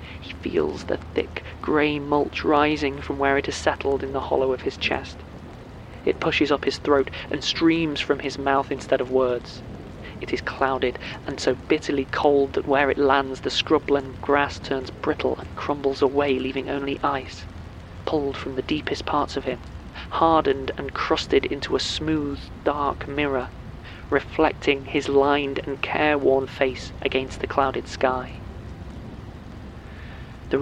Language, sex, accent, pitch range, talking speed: English, male, British, 90-145 Hz, 155 wpm